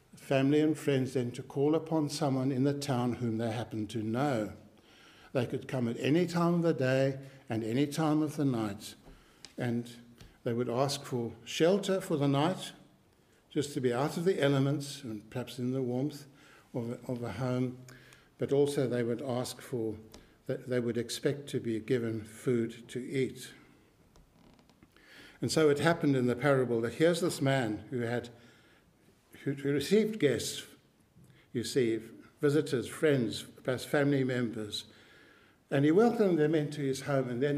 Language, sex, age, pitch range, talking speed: English, male, 60-79, 120-150 Hz, 165 wpm